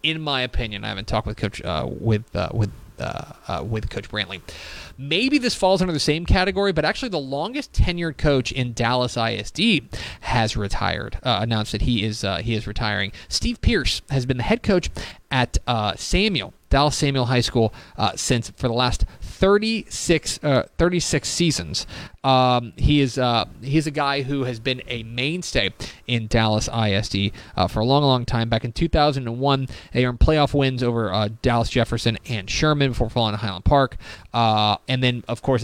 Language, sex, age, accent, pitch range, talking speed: English, male, 30-49, American, 110-140 Hz, 185 wpm